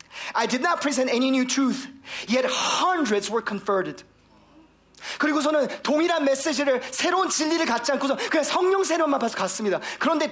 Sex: male